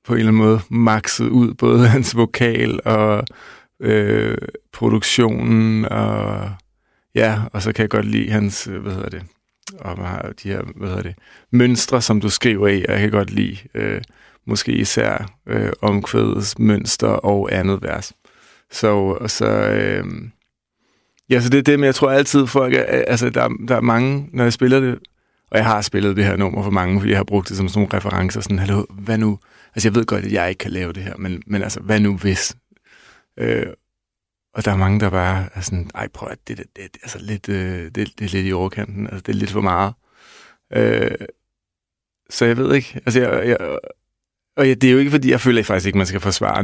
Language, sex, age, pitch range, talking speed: Danish, male, 30-49, 100-115 Hz, 205 wpm